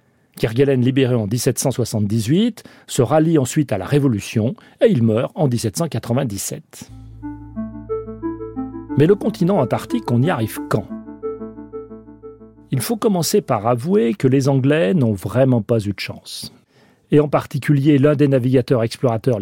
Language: French